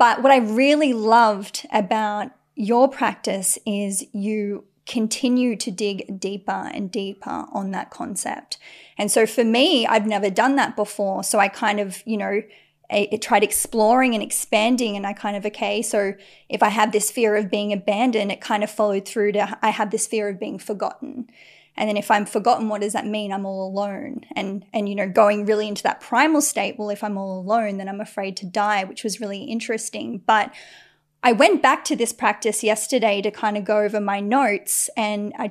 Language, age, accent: English, 20-39, Australian